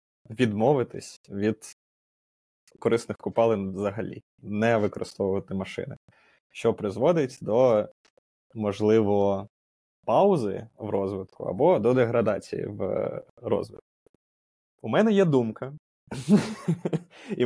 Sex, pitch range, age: male, 100-125 Hz, 20-39